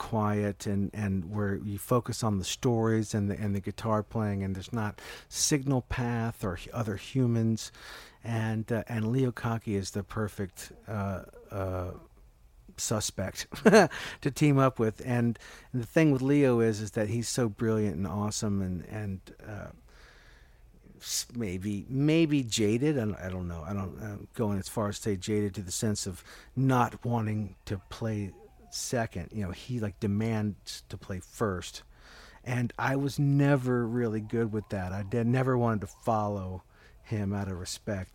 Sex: male